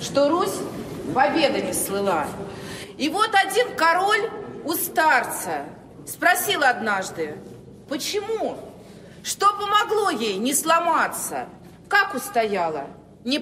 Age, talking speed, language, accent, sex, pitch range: 40-59, 95 wpm, Russian, native, female, 280-395 Hz